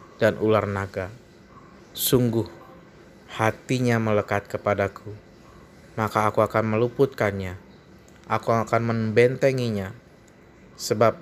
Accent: native